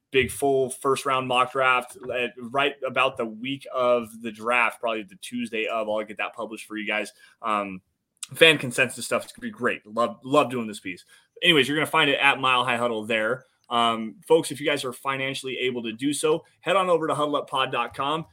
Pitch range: 125-155 Hz